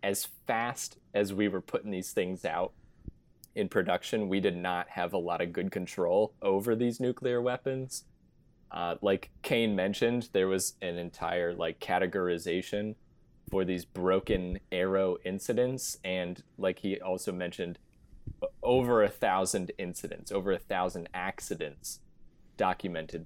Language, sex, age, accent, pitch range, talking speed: English, male, 20-39, American, 90-105 Hz, 135 wpm